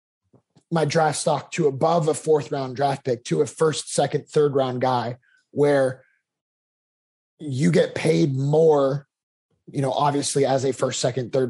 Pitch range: 125-150 Hz